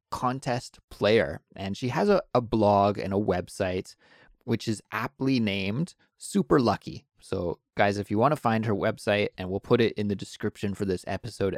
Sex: male